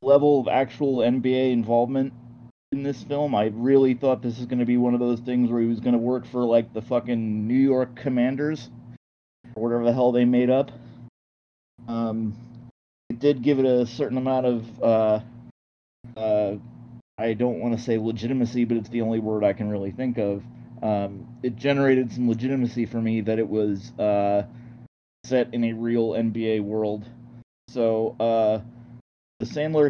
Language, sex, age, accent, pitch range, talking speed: English, male, 30-49, American, 110-120 Hz, 175 wpm